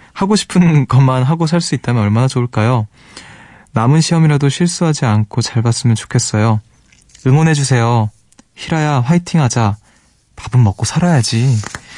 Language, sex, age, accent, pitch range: Korean, male, 20-39, native, 110-140 Hz